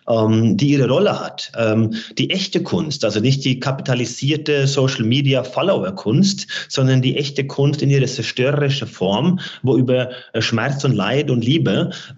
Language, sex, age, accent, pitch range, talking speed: German, male, 30-49, German, 115-140 Hz, 135 wpm